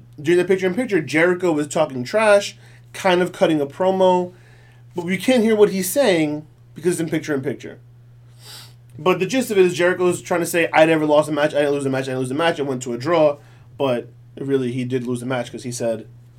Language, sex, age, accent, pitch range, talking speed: English, male, 30-49, American, 120-165 Hz, 230 wpm